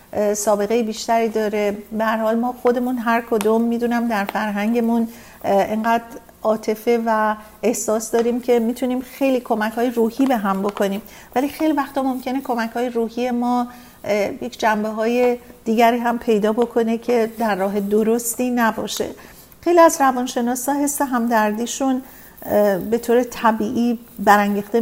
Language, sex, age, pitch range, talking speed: Persian, female, 50-69, 210-245 Hz, 135 wpm